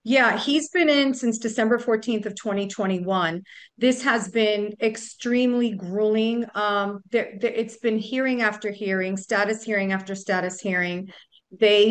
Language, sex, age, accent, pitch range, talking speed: English, female, 40-59, American, 200-230 Hz, 130 wpm